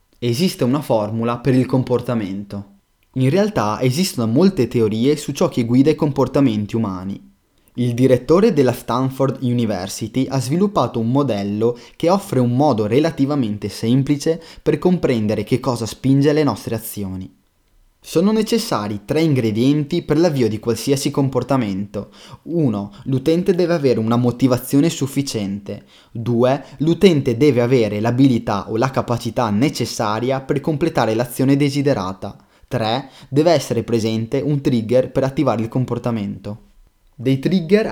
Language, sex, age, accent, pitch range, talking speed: Italian, male, 20-39, native, 110-140 Hz, 130 wpm